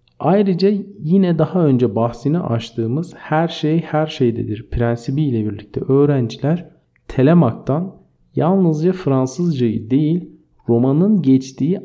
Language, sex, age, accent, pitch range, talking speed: Turkish, male, 50-69, native, 120-165 Hz, 100 wpm